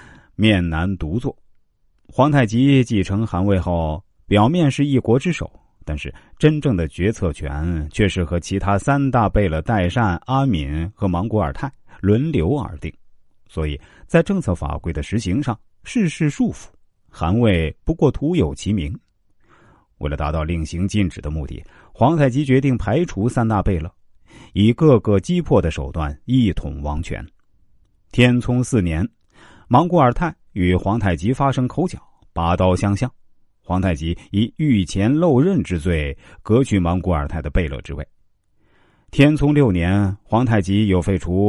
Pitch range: 85-125 Hz